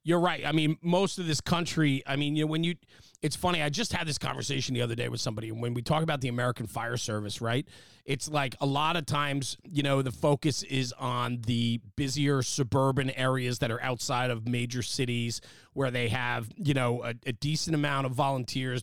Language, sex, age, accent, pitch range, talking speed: English, male, 30-49, American, 125-165 Hz, 220 wpm